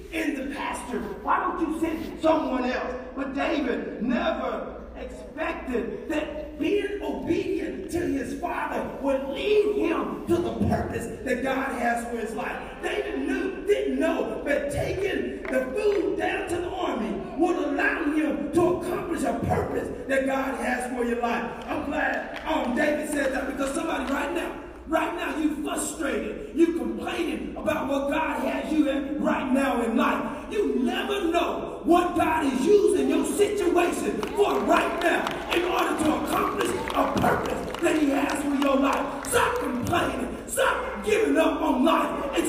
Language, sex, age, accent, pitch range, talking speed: English, male, 40-59, American, 280-355 Hz, 160 wpm